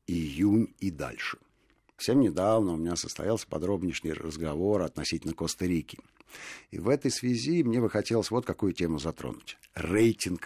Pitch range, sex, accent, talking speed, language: 80-110 Hz, male, native, 140 wpm, Russian